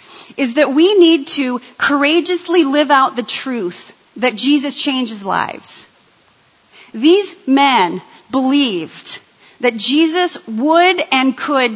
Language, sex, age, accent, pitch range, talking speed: English, female, 30-49, American, 245-320 Hz, 110 wpm